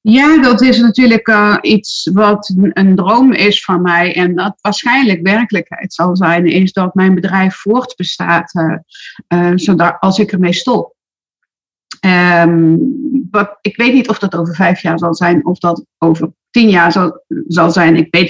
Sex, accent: female, Dutch